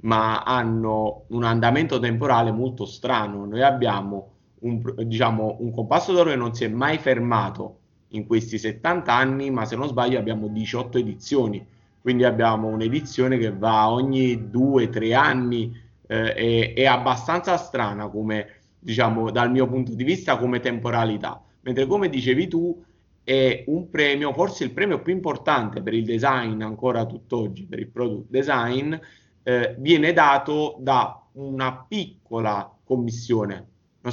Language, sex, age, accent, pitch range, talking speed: Italian, male, 30-49, native, 115-135 Hz, 145 wpm